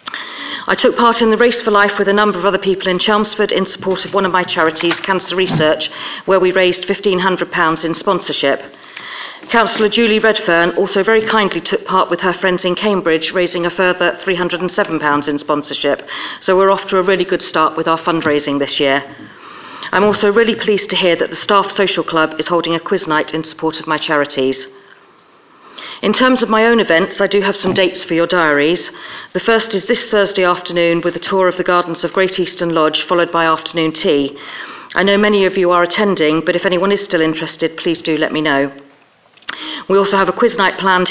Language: English